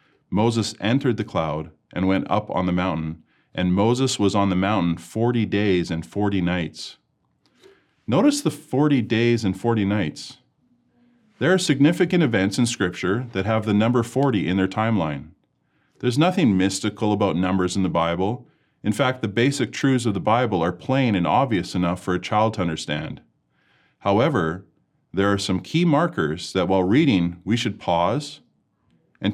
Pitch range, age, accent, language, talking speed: 95-120 Hz, 40-59, American, English, 165 wpm